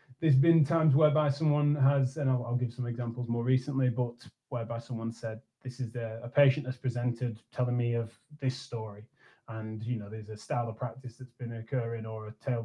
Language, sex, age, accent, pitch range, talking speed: English, male, 20-39, British, 120-140 Hz, 210 wpm